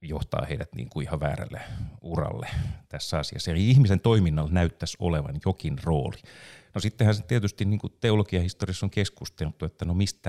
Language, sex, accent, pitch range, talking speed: Finnish, male, native, 80-105 Hz, 155 wpm